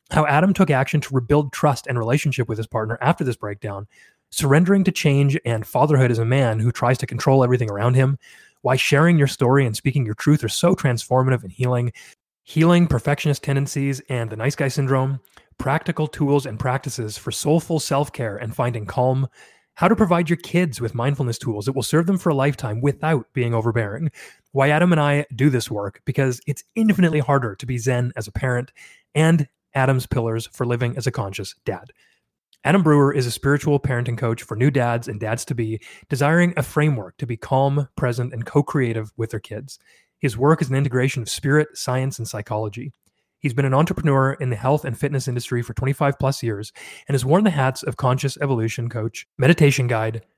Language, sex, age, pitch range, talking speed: English, male, 30-49, 120-145 Hz, 195 wpm